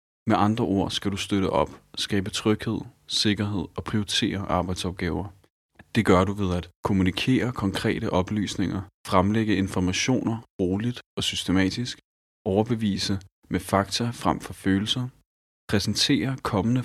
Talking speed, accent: 120 wpm, native